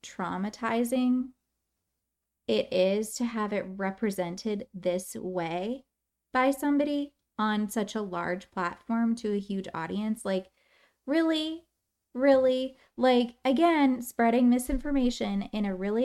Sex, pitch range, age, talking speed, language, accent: female, 210-275 Hz, 20-39, 110 wpm, English, American